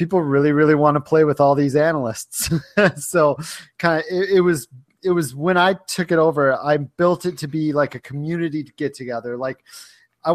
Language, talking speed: English, 210 wpm